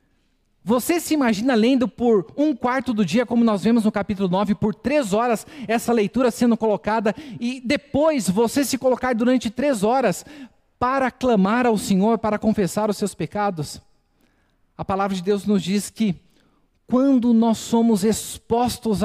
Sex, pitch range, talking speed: male, 185-240 Hz, 155 wpm